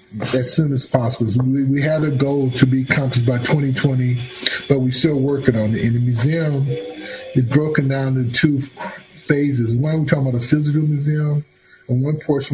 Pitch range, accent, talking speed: 125-150 Hz, American, 185 wpm